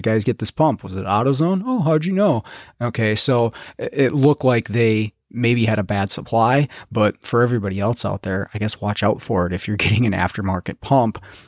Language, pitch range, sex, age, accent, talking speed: English, 105-125 Hz, male, 30-49, American, 210 wpm